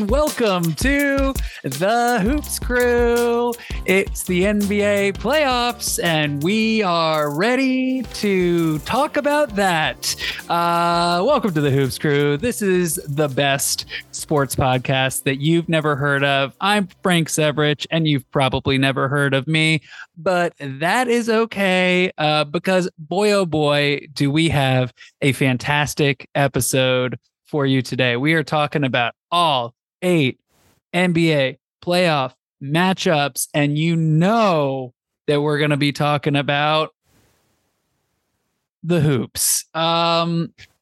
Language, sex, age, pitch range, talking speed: English, male, 20-39, 145-200 Hz, 125 wpm